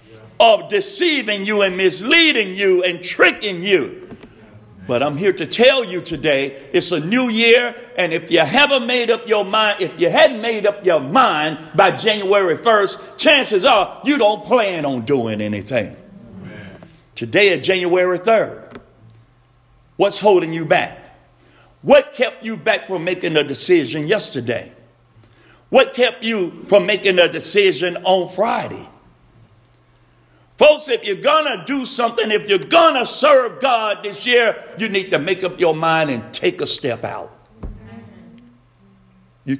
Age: 50-69